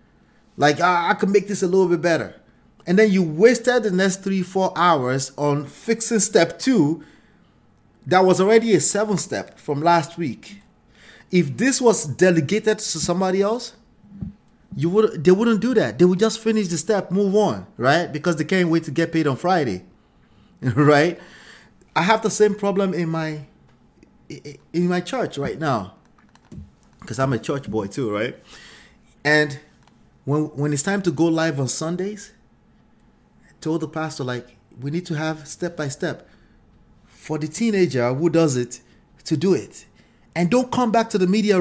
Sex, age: male, 30-49